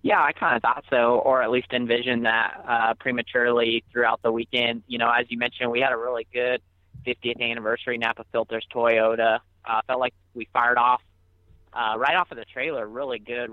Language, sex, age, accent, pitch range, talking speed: English, male, 30-49, American, 115-125 Hz, 200 wpm